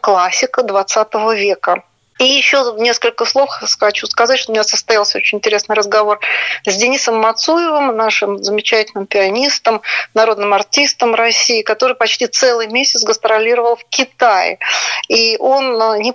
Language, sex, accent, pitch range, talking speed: Russian, female, native, 215-260 Hz, 130 wpm